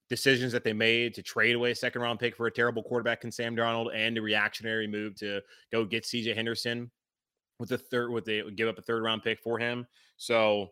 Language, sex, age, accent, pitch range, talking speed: English, male, 20-39, American, 110-130 Hz, 240 wpm